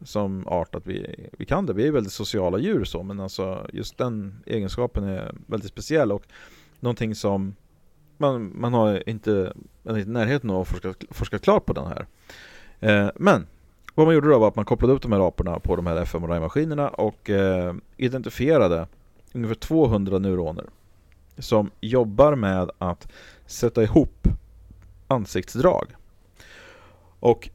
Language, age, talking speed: English, 40-59, 150 wpm